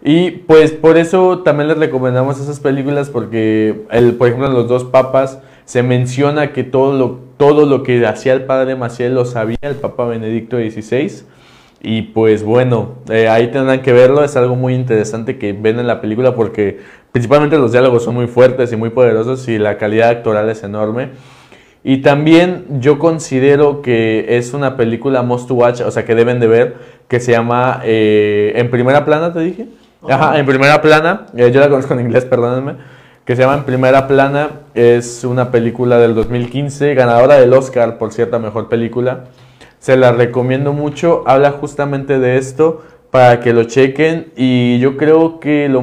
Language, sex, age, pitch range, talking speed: Spanish, male, 20-39, 115-140 Hz, 180 wpm